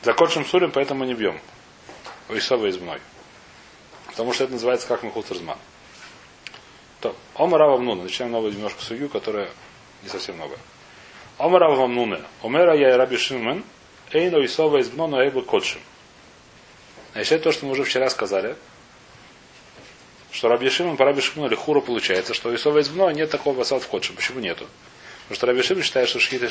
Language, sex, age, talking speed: Russian, male, 30-49, 175 wpm